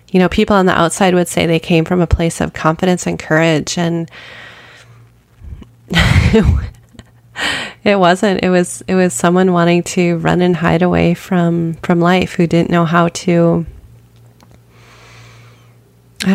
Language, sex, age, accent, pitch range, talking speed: English, female, 20-39, American, 160-190 Hz, 145 wpm